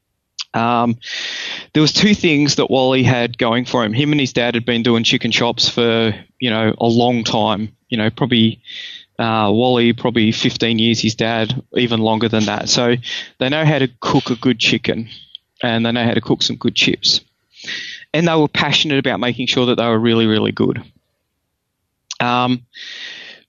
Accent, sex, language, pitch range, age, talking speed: Australian, male, English, 115-140 Hz, 20-39, 185 wpm